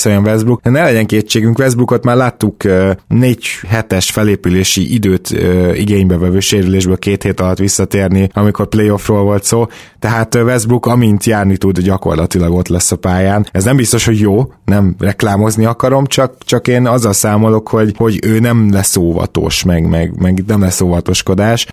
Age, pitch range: 20-39, 95-115 Hz